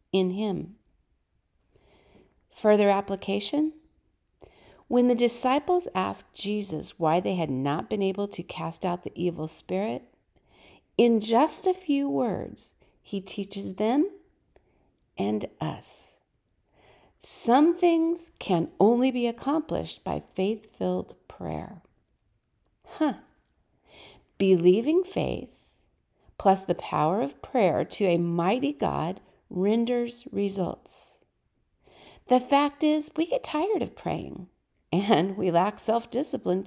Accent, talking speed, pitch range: American, 110 wpm, 185-280 Hz